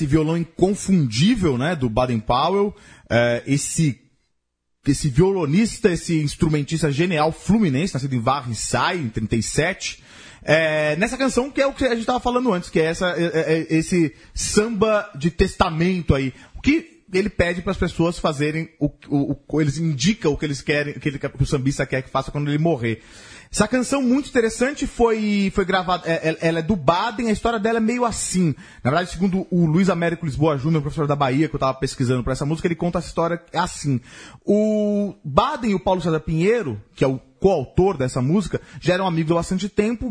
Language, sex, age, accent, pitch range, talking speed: Portuguese, male, 30-49, Brazilian, 145-205 Hz, 195 wpm